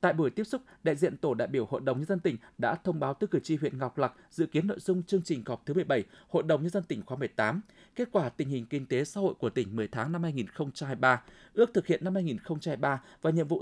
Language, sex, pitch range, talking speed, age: Vietnamese, male, 135-185 Hz, 270 wpm, 20-39